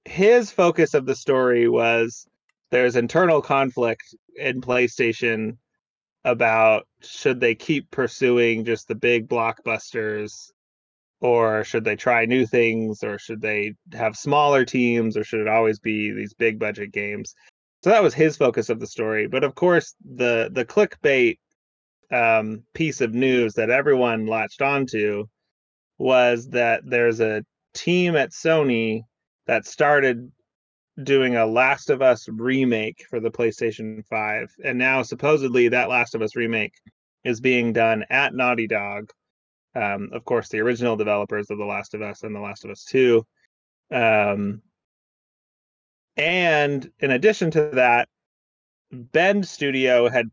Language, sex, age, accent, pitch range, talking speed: English, male, 30-49, American, 110-135 Hz, 145 wpm